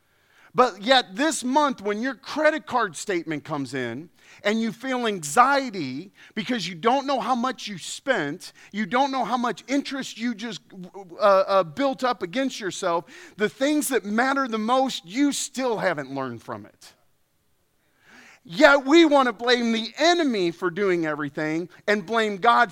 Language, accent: English, American